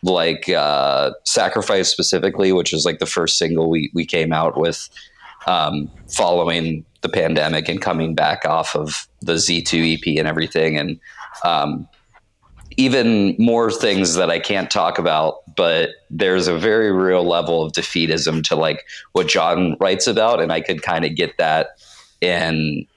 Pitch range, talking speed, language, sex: 80-95 Hz, 160 wpm, English, male